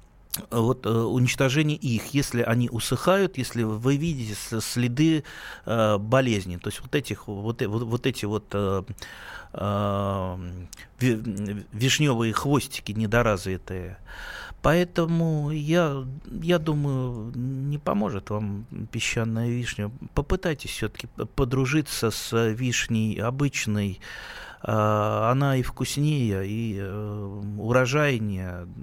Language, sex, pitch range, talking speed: Russian, male, 105-135 Hz, 90 wpm